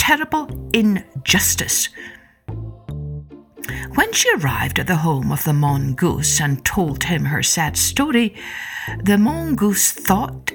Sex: female